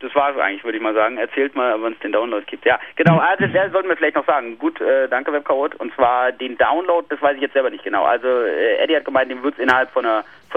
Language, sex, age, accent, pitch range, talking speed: English, male, 30-49, German, 130-190 Hz, 295 wpm